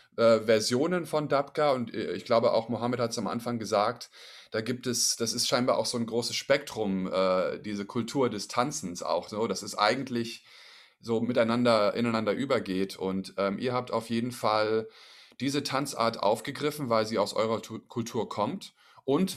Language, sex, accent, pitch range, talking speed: German, male, German, 110-135 Hz, 170 wpm